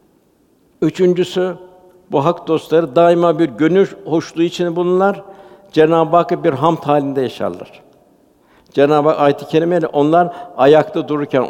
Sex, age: male, 60-79